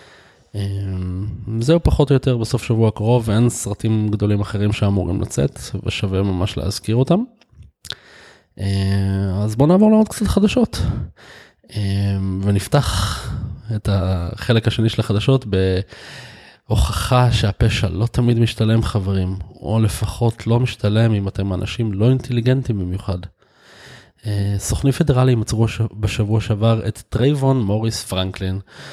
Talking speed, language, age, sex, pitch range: 120 wpm, Hebrew, 20-39, male, 100-125 Hz